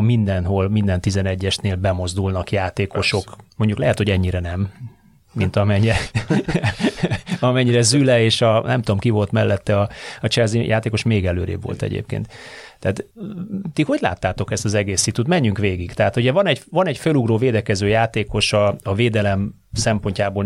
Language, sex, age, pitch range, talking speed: Hungarian, male, 30-49, 95-120 Hz, 145 wpm